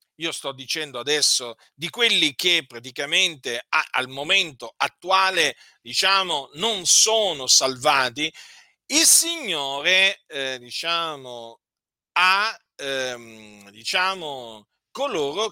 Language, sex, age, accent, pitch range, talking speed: Italian, male, 40-59, native, 135-175 Hz, 90 wpm